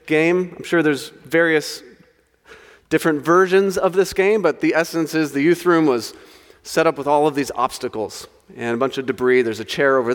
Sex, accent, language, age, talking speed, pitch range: male, American, English, 30-49, 195 wpm, 140-180 Hz